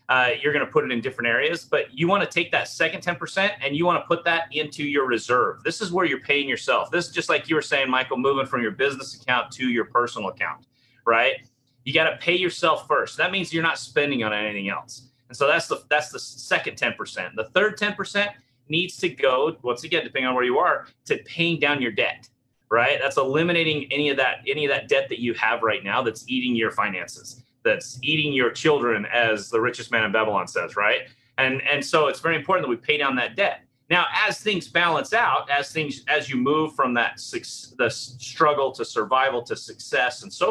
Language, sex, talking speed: English, male, 230 wpm